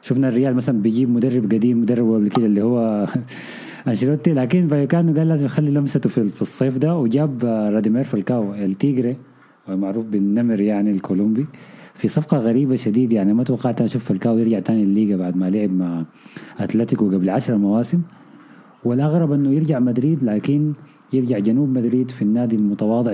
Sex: male